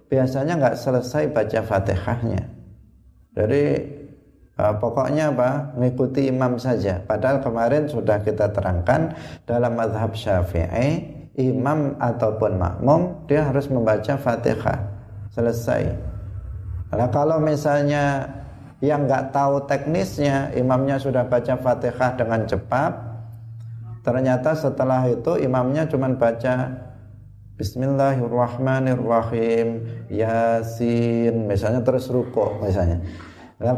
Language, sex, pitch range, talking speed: Indonesian, male, 110-145 Hz, 95 wpm